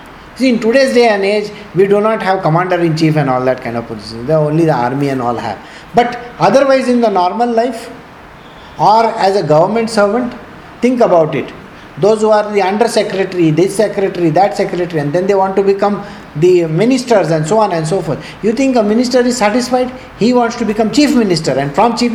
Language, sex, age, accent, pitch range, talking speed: English, male, 50-69, Indian, 155-220 Hz, 205 wpm